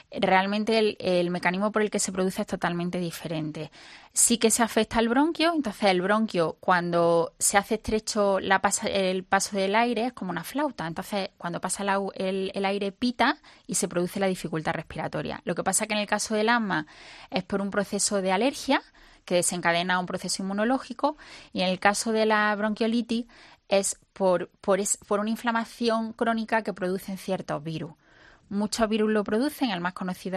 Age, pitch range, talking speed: 10-29, 185-220 Hz, 190 wpm